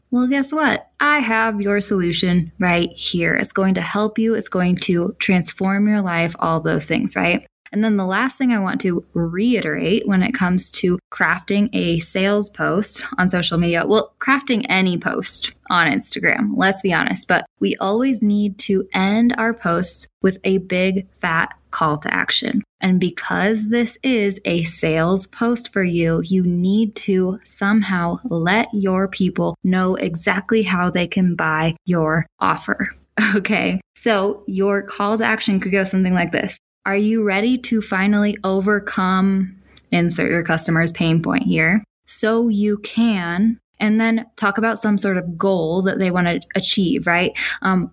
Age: 20-39